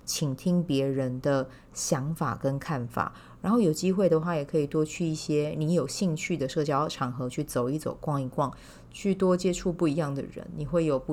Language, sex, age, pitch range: Chinese, female, 30-49, 140-180 Hz